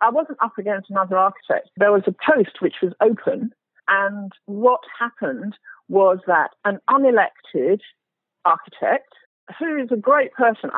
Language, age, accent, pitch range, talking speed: English, 50-69, British, 185-265 Hz, 145 wpm